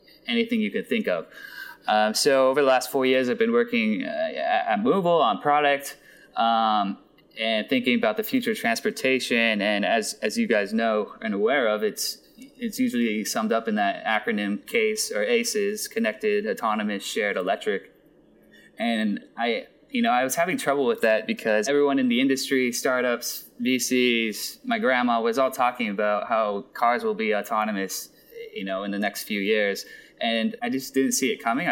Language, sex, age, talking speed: English, male, 20-39, 175 wpm